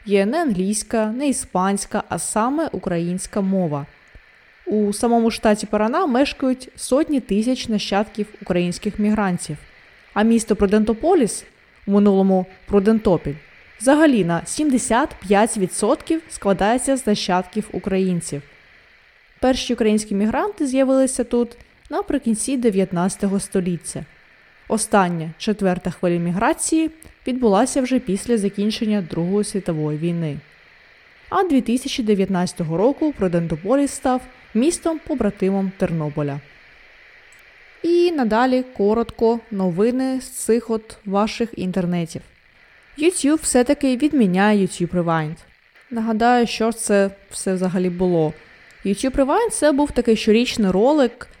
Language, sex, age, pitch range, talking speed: Ukrainian, female, 20-39, 190-255 Hz, 100 wpm